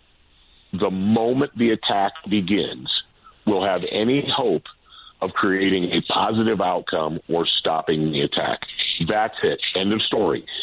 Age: 50-69